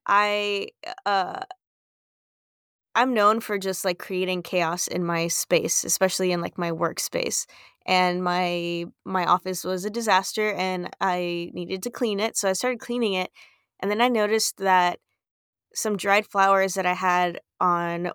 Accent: American